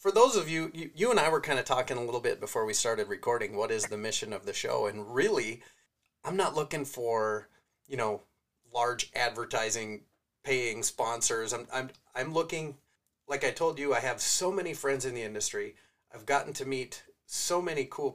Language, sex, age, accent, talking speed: English, male, 30-49, American, 200 wpm